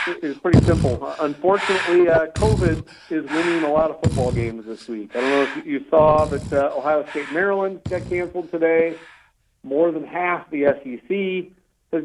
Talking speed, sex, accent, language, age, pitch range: 180 wpm, male, American, English, 40-59, 120-155 Hz